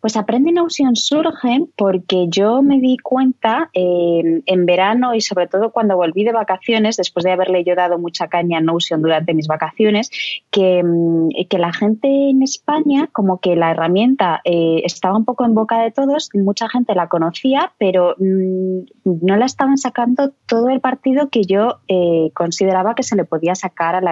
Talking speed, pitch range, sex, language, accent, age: 180 wpm, 170-230 Hz, female, Spanish, Spanish, 20-39